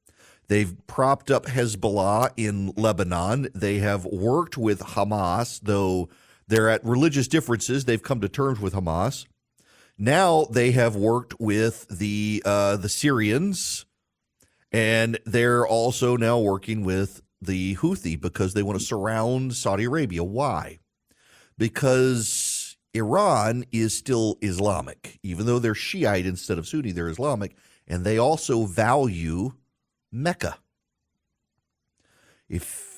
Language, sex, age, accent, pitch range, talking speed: English, male, 40-59, American, 95-120 Hz, 120 wpm